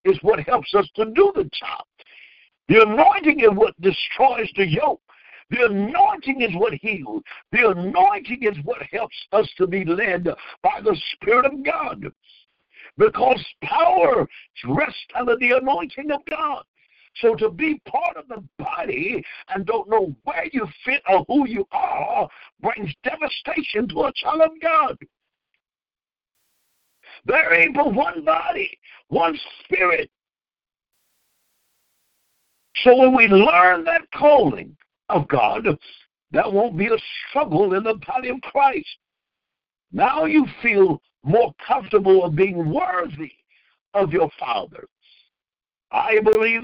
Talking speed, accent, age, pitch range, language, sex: 135 wpm, American, 60-79, 210-325 Hz, English, male